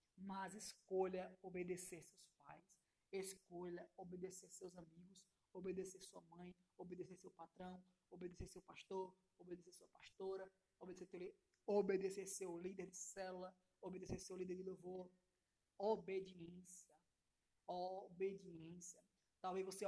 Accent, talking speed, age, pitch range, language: Brazilian, 110 wpm, 20-39, 180-195 Hz, Portuguese